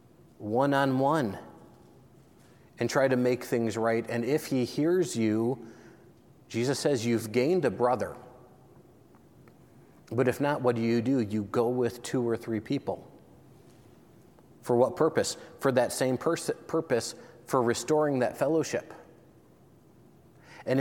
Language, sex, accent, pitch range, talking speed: English, male, American, 120-155 Hz, 125 wpm